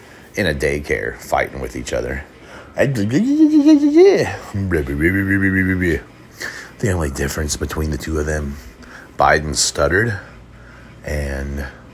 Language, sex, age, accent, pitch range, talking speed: English, male, 30-49, American, 70-100 Hz, 90 wpm